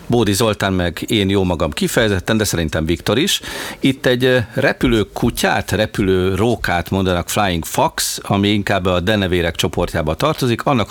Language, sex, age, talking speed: Hungarian, male, 50-69, 150 wpm